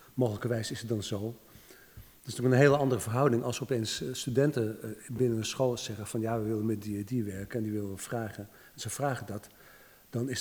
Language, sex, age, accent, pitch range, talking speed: Dutch, male, 50-69, Dutch, 110-125 Hz, 220 wpm